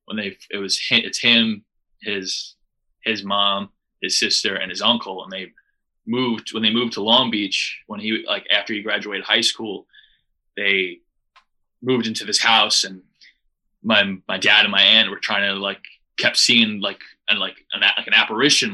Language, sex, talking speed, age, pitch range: English, male, 185 wpm, 20-39, 100-120 Hz